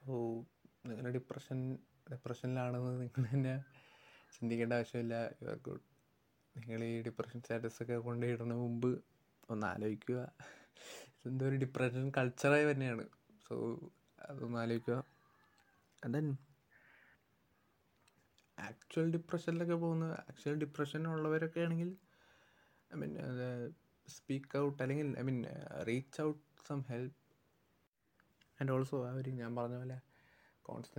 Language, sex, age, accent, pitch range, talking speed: Malayalam, male, 20-39, native, 120-145 Hz, 95 wpm